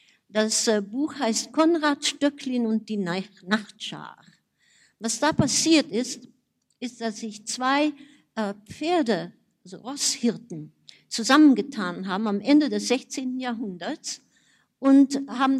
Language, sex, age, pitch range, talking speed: German, female, 50-69, 210-275 Hz, 110 wpm